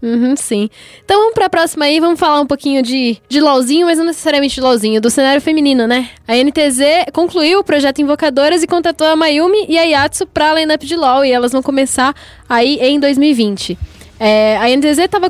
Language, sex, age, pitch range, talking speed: Portuguese, female, 10-29, 235-300 Hz, 205 wpm